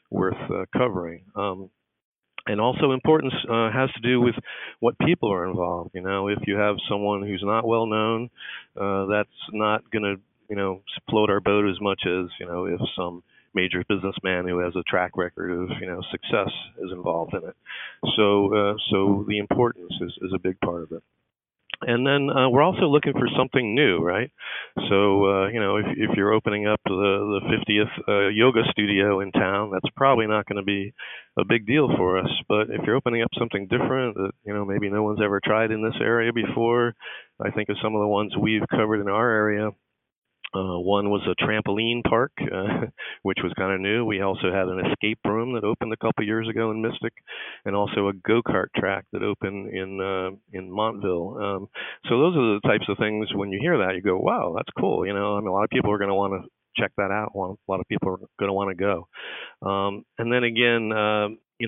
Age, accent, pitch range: 50-69, American, 95-115 Hz